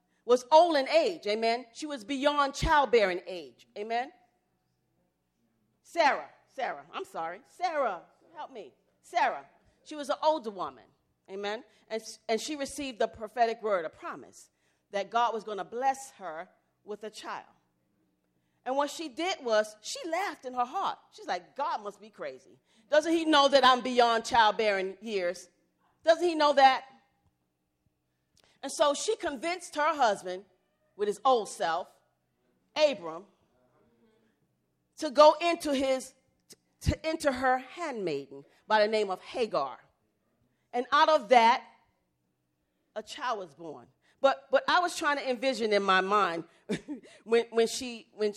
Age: 40-59